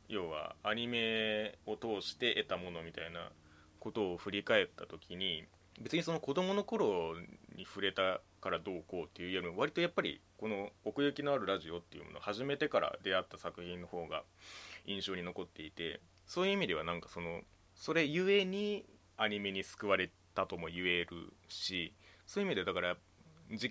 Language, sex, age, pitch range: Japanese, male, 20-39, 90-120 Hz